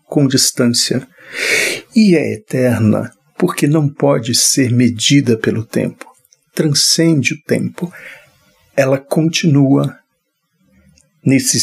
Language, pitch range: Portuguese, 125-175 Hz